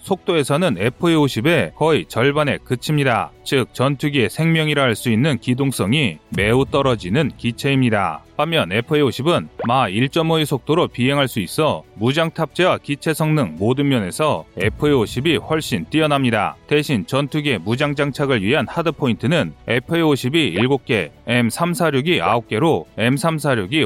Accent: native